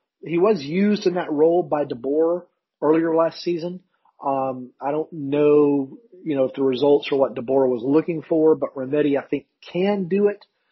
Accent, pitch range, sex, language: American, 140-170 Hz, male, English